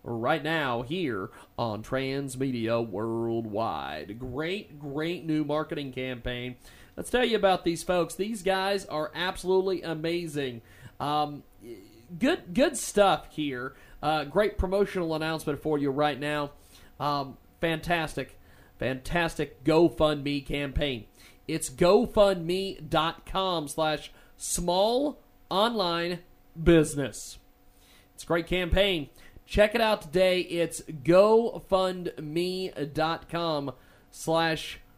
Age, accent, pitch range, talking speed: 40-59, American, 135-180 Hz, 100 wpm